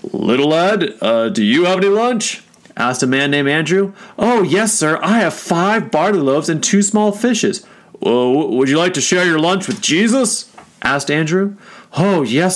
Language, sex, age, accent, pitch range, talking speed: English, male, 40-59, American, 155-200 Hz, 180 wpm